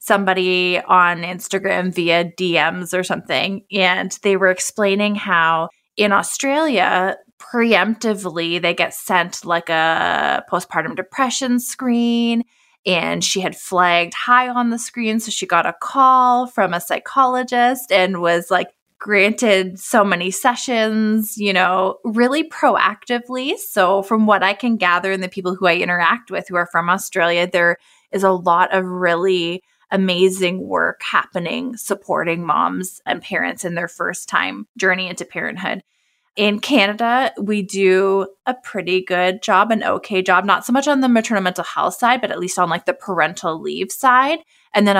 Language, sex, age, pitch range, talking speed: English, female, 20-39, 180-220 Hz, 155 wpm